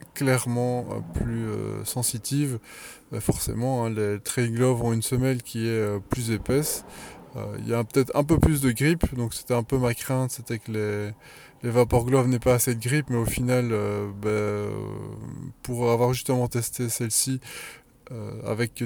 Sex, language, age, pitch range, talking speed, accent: male, French, 20-39, 110-130 Hz, 195 wpm, French